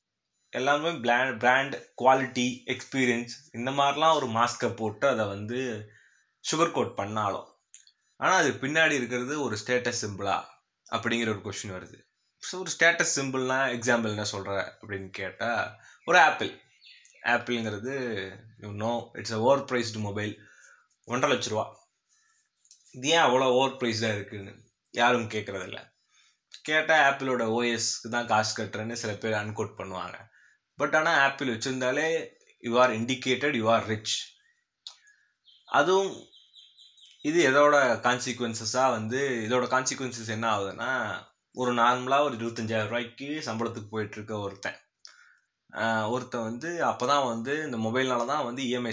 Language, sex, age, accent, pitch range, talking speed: Tamil, male, 20-39, native, 110-130 Hz, 125 wpm